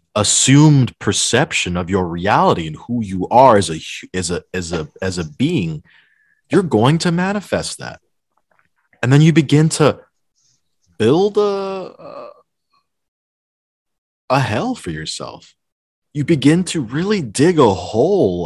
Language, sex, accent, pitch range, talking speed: English, male, American, 95-155 Hz, 135 wpm